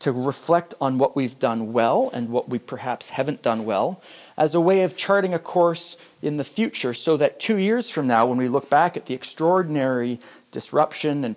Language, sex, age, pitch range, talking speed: English, male, 40-59, 125-155 Hz, 205 wpm